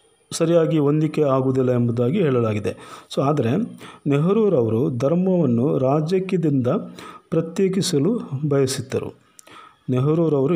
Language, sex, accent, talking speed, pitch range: Kannada, male, native, 75 wpm, 125-160 Hz